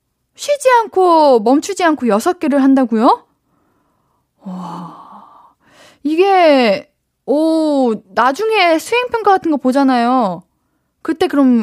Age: 20-39